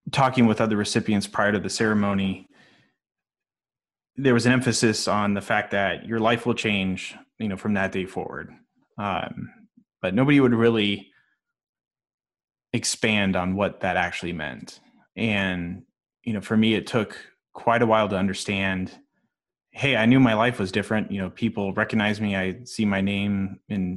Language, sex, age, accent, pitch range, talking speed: English, male, 20-39, American, 95-120 Hz, 165 wpm